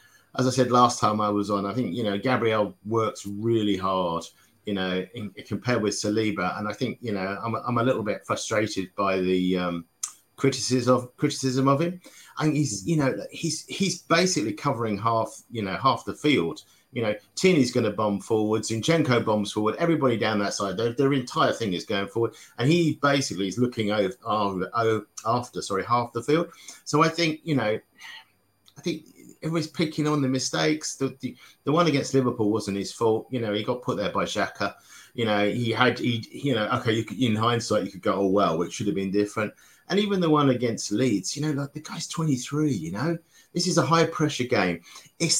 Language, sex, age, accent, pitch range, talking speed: English, male, 50-69, British, 105-150 Hz, 215 wpm